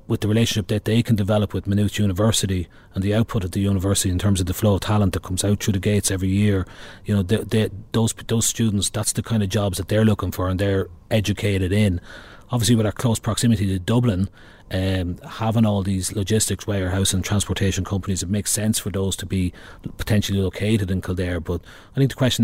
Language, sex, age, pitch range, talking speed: English, male, 30-49, 95-110 Hz, 220 wpm